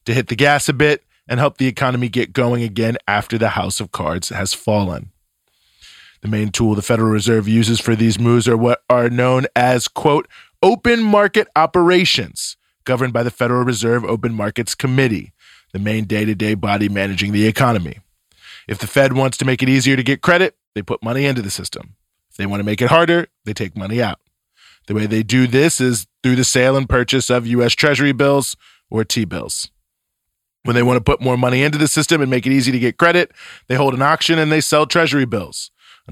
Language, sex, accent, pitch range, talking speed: English, male, American, 110-135 Hz, 210 wpm